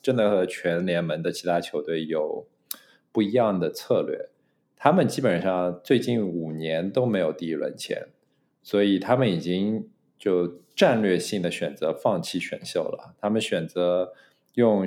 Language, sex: Chinese, male